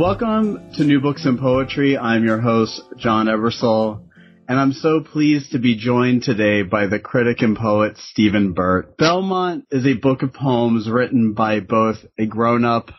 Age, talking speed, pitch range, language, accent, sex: 40-59, 170 wpm, 110-140 Hz, English, American, male